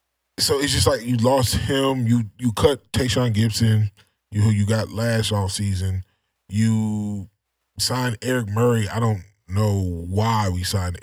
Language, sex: English, male